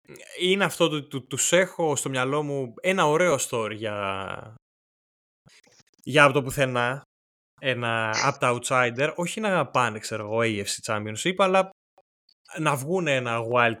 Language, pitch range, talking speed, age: Greek, 115-170 Hz, 155 wpm, 20-39